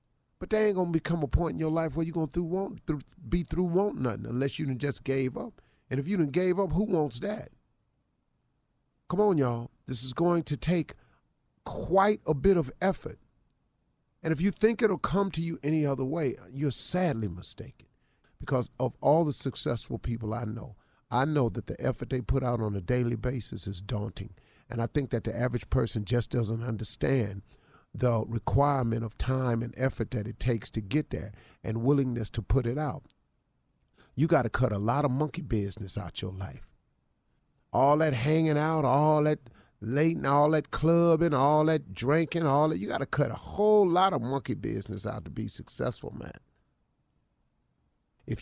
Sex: male